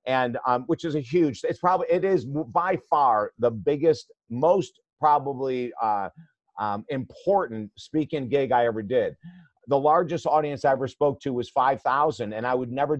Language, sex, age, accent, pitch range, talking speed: English, male, 50-69, American, 130-170 Hz, 170 wpm